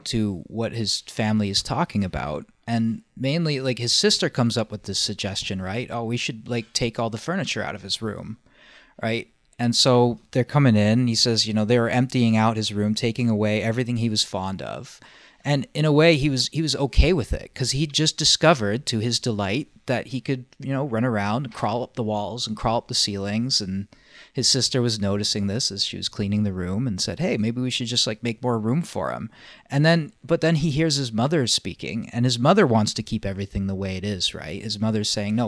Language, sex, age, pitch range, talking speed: English, male, 30-49, 105-130 Hz, 235 wpm